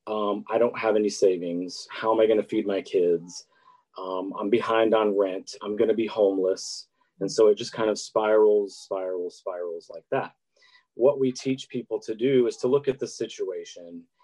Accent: American